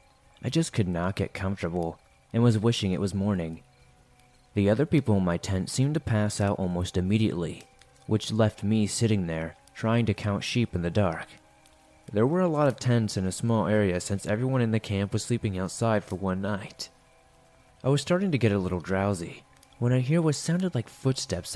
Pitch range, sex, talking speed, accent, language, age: 95-115 Hz, male, 200 wpm, American, English, 20-39